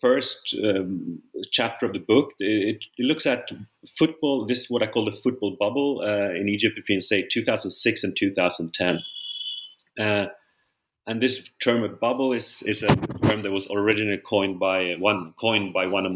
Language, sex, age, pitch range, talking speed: English, male, 30-49, 100-130 Hz, 175 wpm